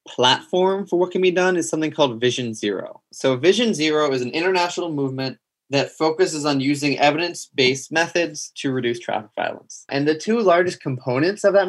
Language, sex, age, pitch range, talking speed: English, male, 20-39, 125-165 Hz, 180 wpm